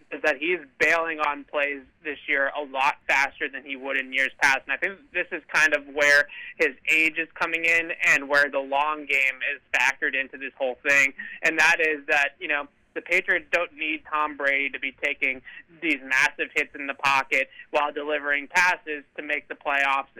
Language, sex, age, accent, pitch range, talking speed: English, male, 20-39, American, 140-170 Hz, 205 wpm